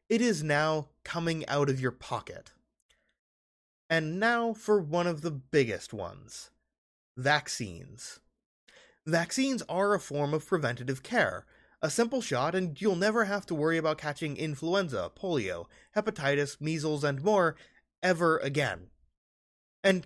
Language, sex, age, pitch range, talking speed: English, male, 20-39, 140-195 Hz, 130 wpm